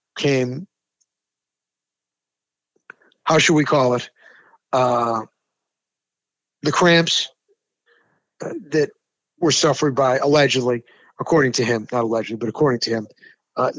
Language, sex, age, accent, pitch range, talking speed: English, male, 50-69, American, 125-165 Hz, 105 wpm